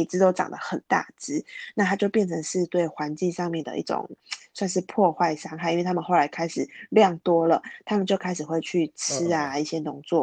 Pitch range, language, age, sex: 165-195 Hz, Chinese, 20-39, female